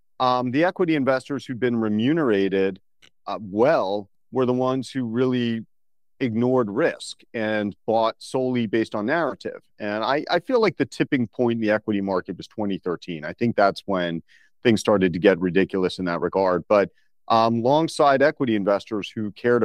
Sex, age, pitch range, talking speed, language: male, 40-59, 100-125 Hz, 170 wpm, English